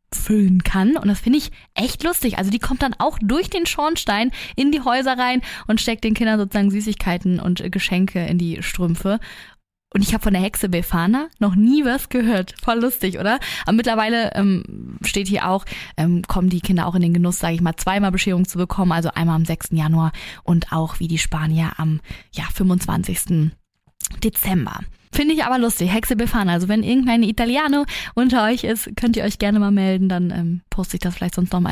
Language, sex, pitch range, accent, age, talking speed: German, female, 180-220 Hz, German, 20-39, 200 wpm